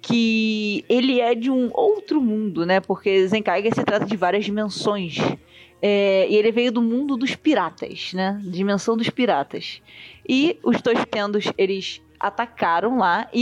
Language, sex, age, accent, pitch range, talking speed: Portuguese, female, 20-39, Brazilian, 185-245 Hz, 150 wpm